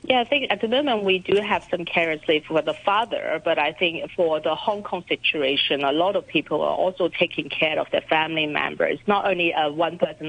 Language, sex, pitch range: English, female, 155-190 Hz